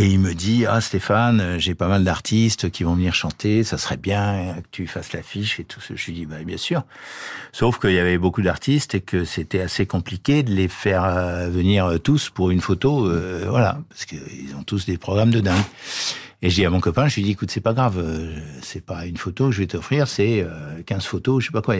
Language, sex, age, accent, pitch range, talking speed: French, male, 60-79, French, 90-110 Hz, 250 wpm